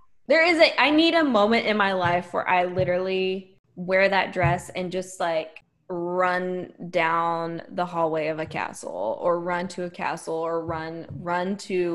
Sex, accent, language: female, American, English